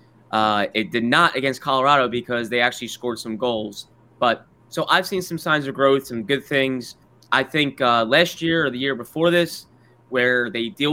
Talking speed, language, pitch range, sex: 200 wpm, English, 120-155 Hz, male